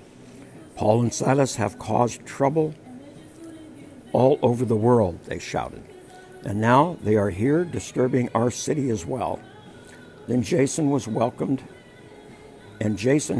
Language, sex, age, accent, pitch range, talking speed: English, male, 60-79, American, 110-130 Hz, 125 wpm